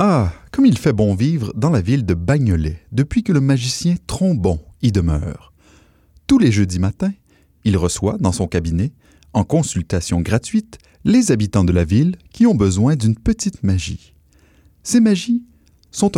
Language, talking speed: French, 165 wpm